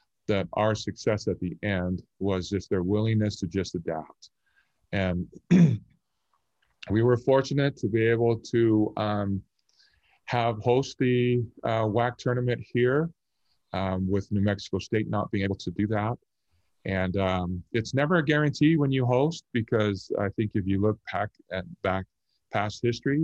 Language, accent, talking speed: English, American, 150 wpm